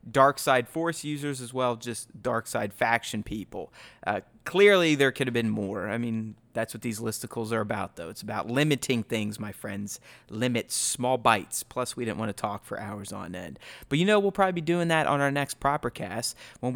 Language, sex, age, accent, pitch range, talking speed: English, male, 30-49, American, 115-150 Hz, 215 wpm